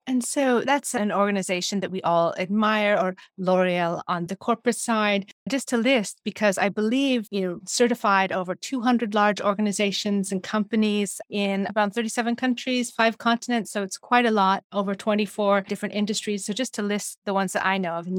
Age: 30-49